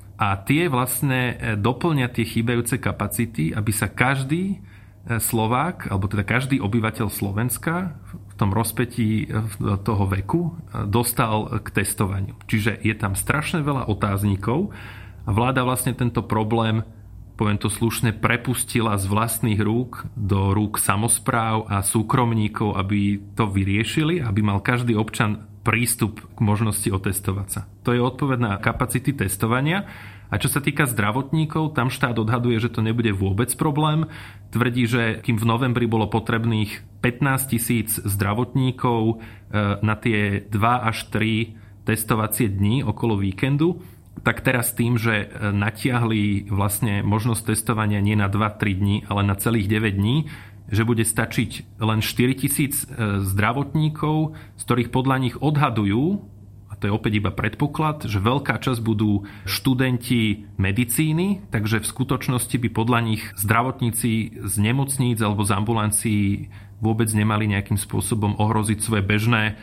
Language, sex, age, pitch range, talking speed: Slovak, male, 30-49, 105-125 Hz, 135 wpm